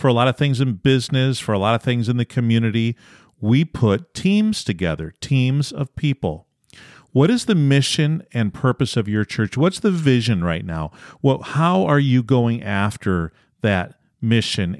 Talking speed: 180 wpm